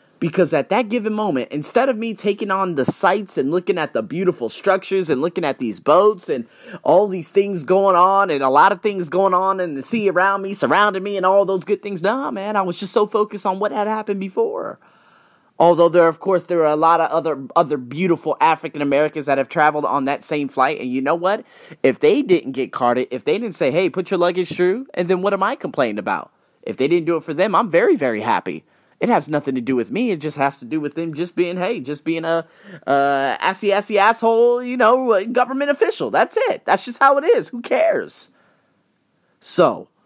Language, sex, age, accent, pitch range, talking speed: English, male, 30-49, American, 150-205 Hz, 230 wpm